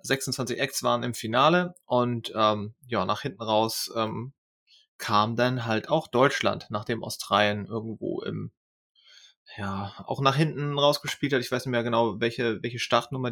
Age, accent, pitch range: 30-49, German, 115-135 Hz